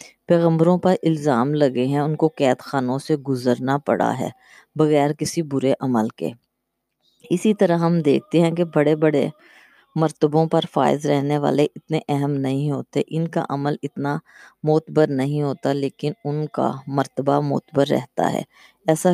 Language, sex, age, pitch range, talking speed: Urdu, female, 20-39, 135-160 Hz, 155 wpm